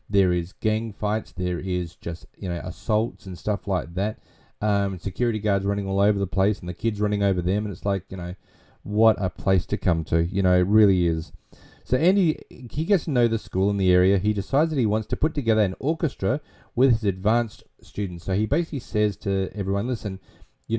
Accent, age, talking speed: Australian, 30-49, 220 wpm